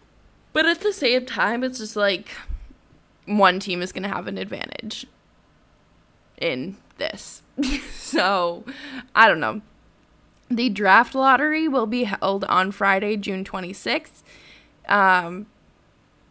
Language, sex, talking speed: English, female, 115 wpm